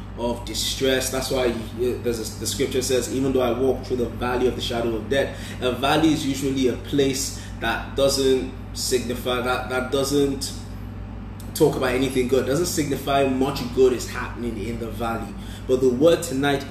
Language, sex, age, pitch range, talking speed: English, male, 20-39, 115-145 Hz, 185 wpm